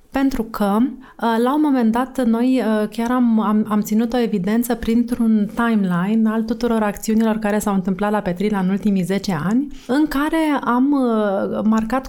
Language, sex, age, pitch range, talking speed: Romanian, female, 30-49, 185-235 Hz, 160 wpm